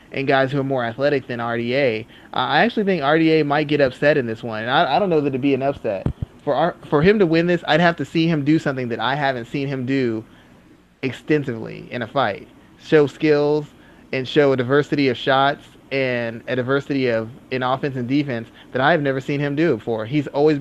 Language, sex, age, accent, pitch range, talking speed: English, male, 30-49, American, 130-155 Hz, 225 wpm